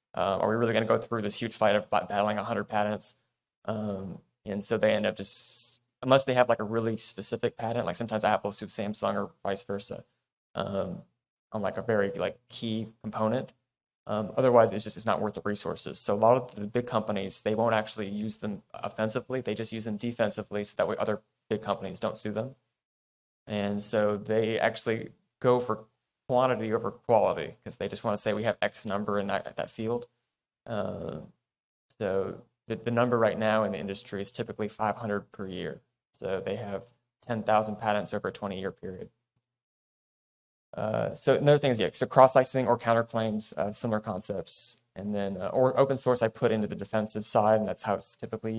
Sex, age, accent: male, 20-39, American